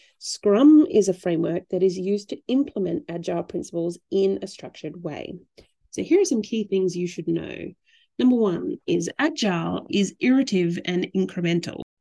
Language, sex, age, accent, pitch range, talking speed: English, female, 30-49, Australian, 180-250 Hz, 160 wpm